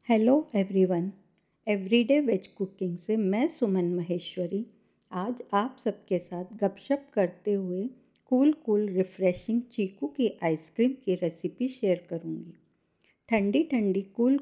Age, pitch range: 50-69, 185-225 Hz